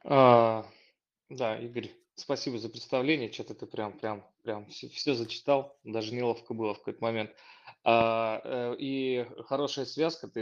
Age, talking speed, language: 20-39, 140 wpm, Russian